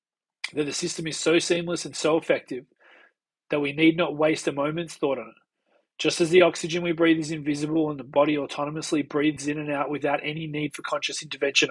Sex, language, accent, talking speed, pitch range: male, English, Australian, 210 wpm, 150-170 Hz